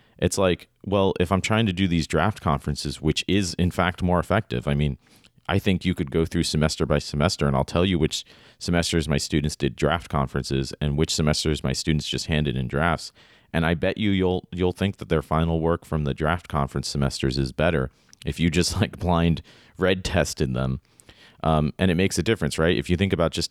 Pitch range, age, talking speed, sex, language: 70-90 Hz, 40-59, 220 wpm, male, English